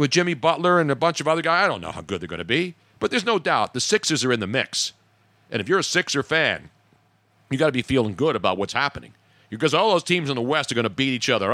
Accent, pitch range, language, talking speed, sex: American, 120-180 Hz, English, 290 wpm, male